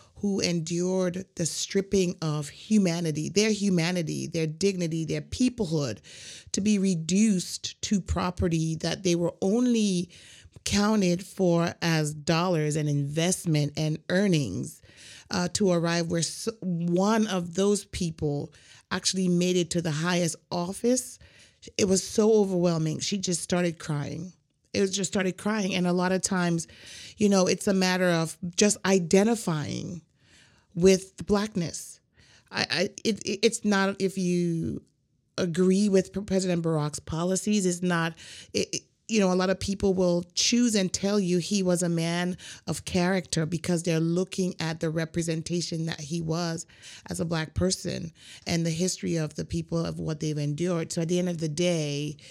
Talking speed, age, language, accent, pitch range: 155 wpm, 30-49, English, American, 165-190 Hz